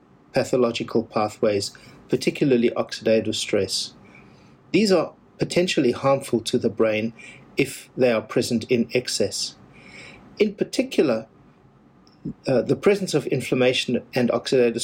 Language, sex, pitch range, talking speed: English, male, 115-135 Hz, 110 wpm